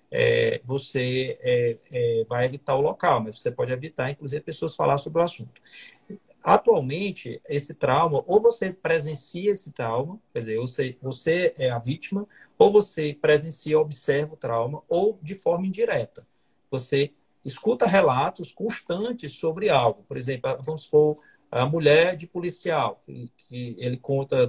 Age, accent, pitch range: 40-59, Brazilian, 135-175 Hz